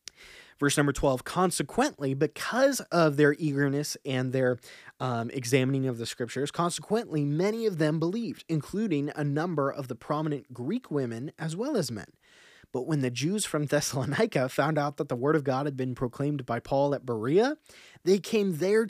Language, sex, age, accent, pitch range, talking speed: English, male, 20-39, American, 130-165 Hz, 175 wpm